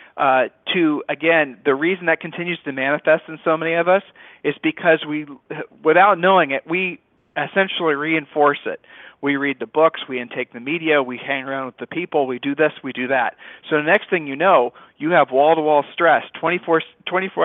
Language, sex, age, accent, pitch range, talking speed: English, male, 40-59, American, 140-165 Hz, 195 wpm